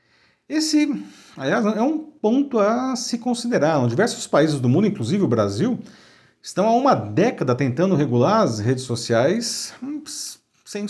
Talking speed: 145 wpm